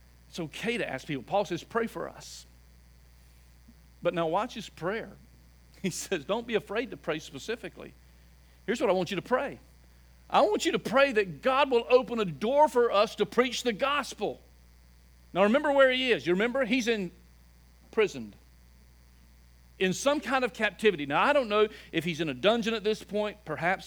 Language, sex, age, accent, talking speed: English, male, 50-69, American, 190 wpm